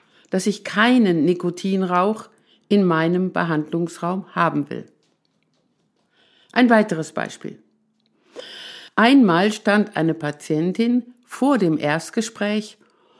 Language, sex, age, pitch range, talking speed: German, female, 60-79, 175-225 Hz, 85 wpm